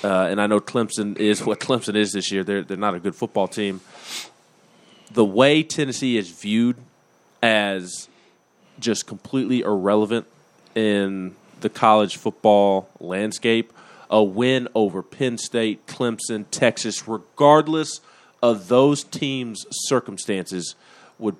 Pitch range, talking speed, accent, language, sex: 100-120 Hz, 125 wpm, American, English, male